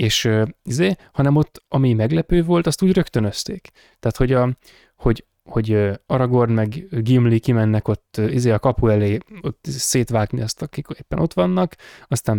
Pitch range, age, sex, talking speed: 115-150 Hz, 20-39, male, 165 wpm